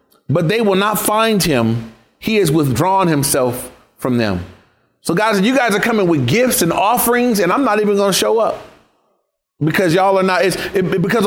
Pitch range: 160-210 Hz